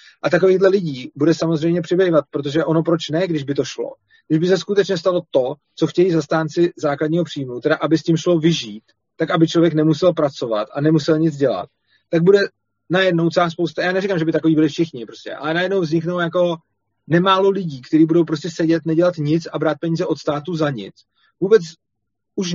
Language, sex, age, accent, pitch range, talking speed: Czech, male, 30-49, native, 155-175 Hz, 195 wpm